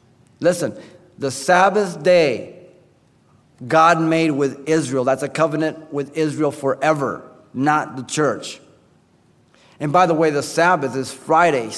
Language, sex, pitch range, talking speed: English, male, 130-170 Hz, 125 wpm